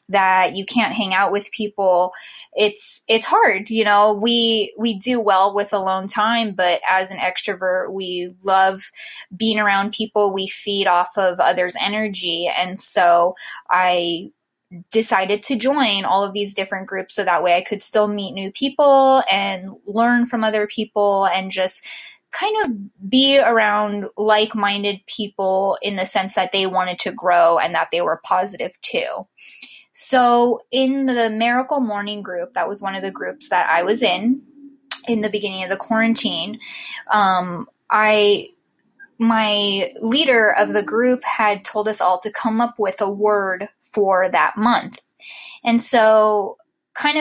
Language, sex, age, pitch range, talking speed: English, female, 10-29, 190-230 Hz, 160 wpm